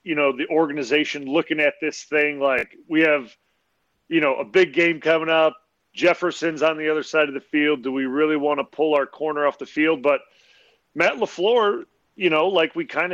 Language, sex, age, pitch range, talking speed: English, male, 30-49, 135-165 Hz, 205 wpm